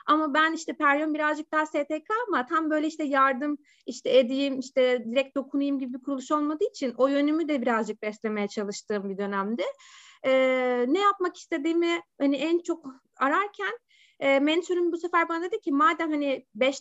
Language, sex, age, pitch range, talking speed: Turkish, female, 30-49, 225-310 Hz, 170 wpm